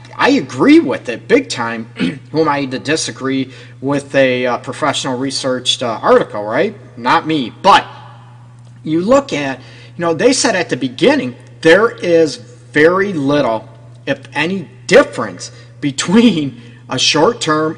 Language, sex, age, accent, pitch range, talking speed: English, male, 40-59, American, 125-160 Hz, 130 wpm